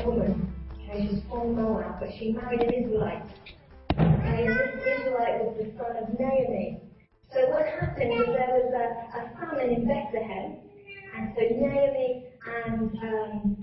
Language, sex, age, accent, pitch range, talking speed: English, female, 30-49, British, 215-250 Hz, 150 wpm